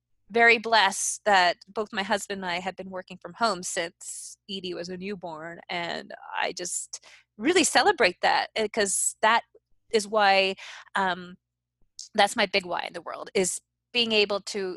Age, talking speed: 20-39, 165 wpm